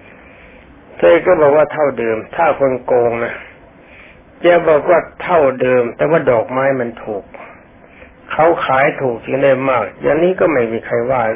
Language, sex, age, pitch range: Thai, male, 60-79, 125-150 Hz